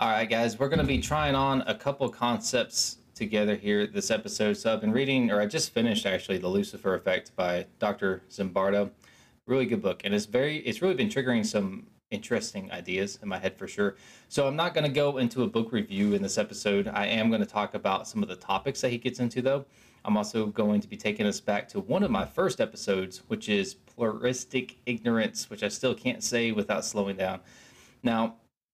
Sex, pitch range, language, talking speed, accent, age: male, 100-130 Hz, English, 215 wpm, American, 20-39